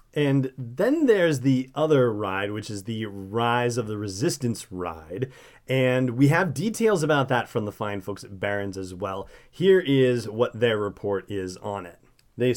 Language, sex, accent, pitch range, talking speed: English, male, American, 115-140 Hz, 175 wpm